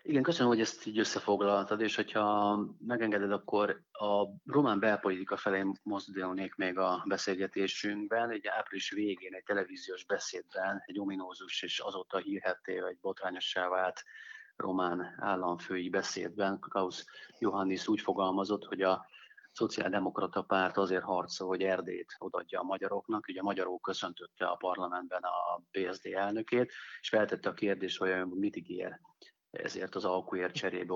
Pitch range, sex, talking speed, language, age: 95-105 Hz, male, 135 wpm, Hungarian, 30-49